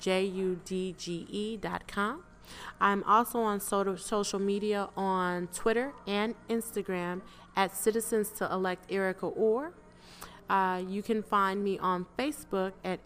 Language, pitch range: English, 195-250 Hz